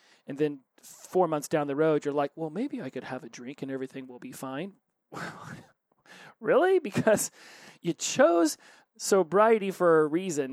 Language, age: English, 30-49